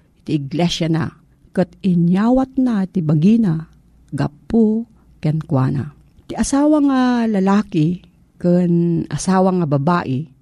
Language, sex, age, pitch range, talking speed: Filipino, female, 40-59, 155-210 Hz, 100 wpm